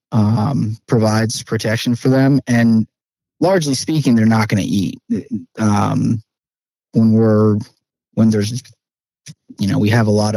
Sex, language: male, English